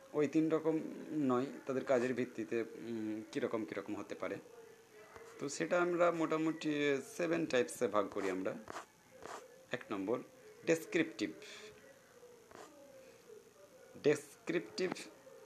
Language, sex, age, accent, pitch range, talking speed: Bengali, male, 50-69, native, 140-215 Hz, 80 wpm